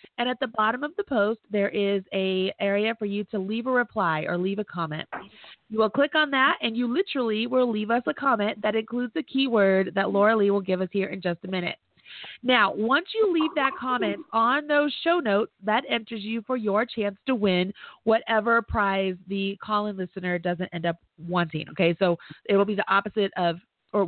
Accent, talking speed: American, 210 wpm